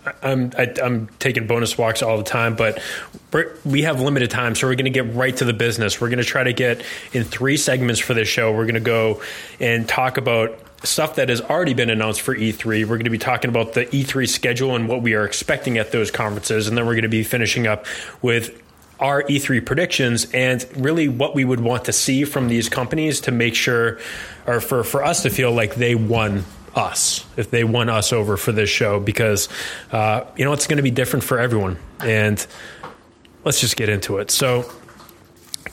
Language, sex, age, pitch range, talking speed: English, male, 20-39, 110-130 Hz, 215 wpm